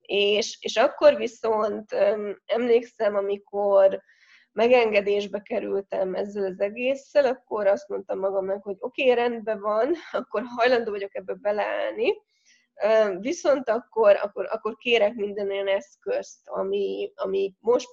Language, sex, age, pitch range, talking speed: Hungarian, female, 20-39, 200-250 Hz, 120 wpm